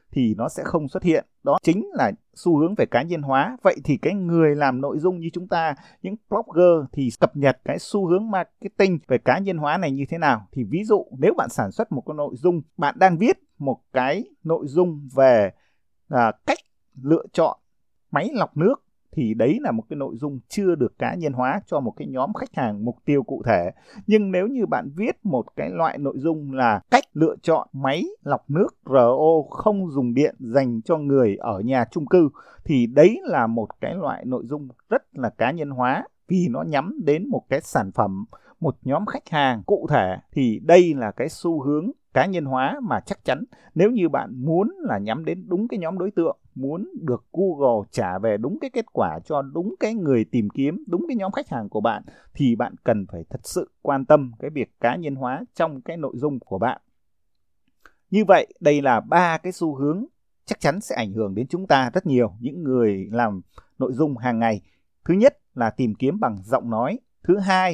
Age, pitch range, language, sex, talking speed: 20-39, 130-180 Hz, Vietnamese, male, 215 wpm